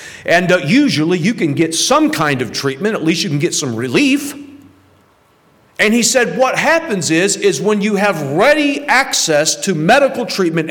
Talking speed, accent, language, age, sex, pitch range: 180 wpm, American, English, 40-59, male, 145-220 Hz